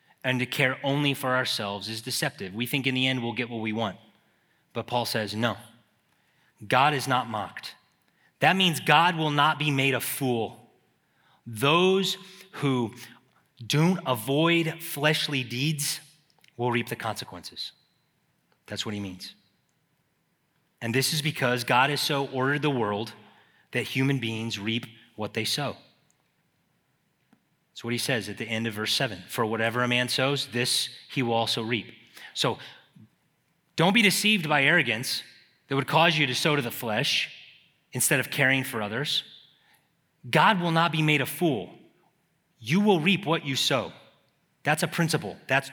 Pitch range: 120-160 Hz